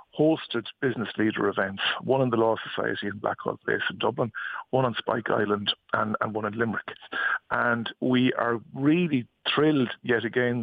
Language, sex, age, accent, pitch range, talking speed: English, male, 50-69, Irish, 110-130 Hz, 170 wpm